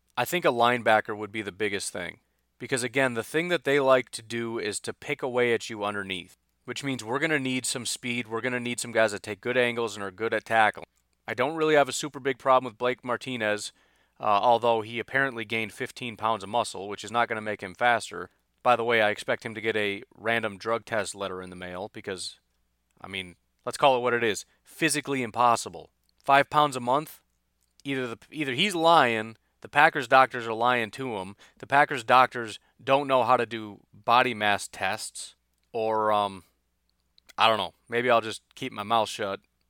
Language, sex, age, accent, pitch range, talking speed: English, male, 30-49, American, 105-135 Hz, 215 wpm